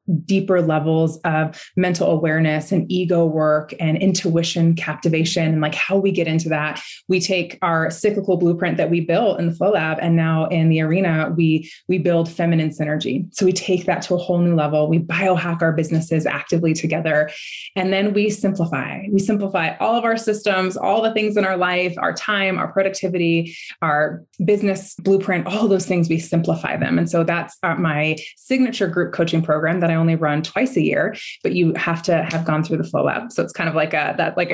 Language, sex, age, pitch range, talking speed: English, female, 20-39, 160-190 Hz, 205 wpm